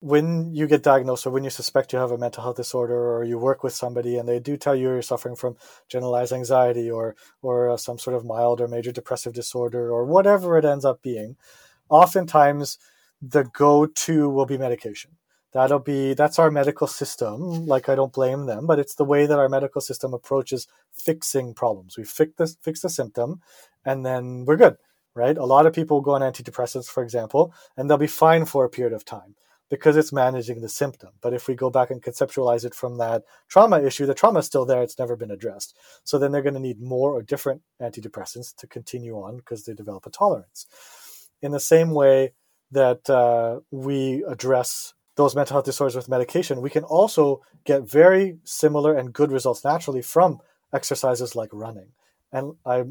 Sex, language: male, English